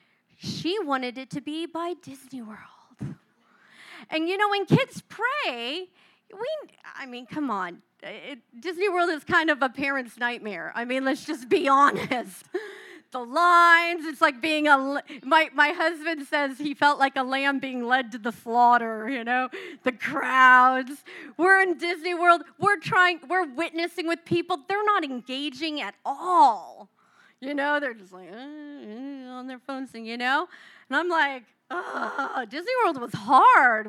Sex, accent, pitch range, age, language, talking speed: female, American, 255-350 Hz, 40-59, English, 165 wpm